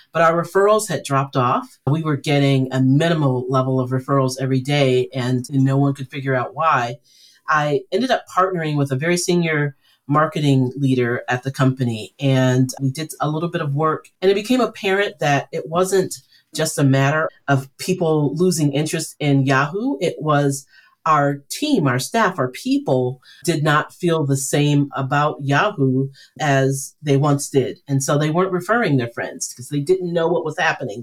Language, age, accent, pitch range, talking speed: English, 40-59, American, 130-170 Hz, 180 wpm